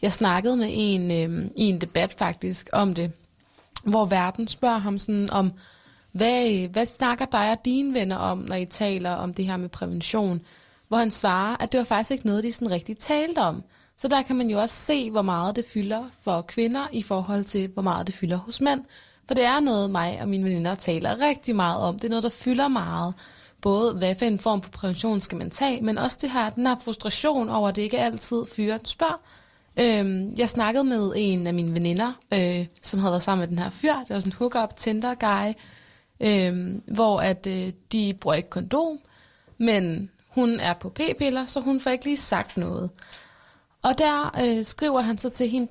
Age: 20-39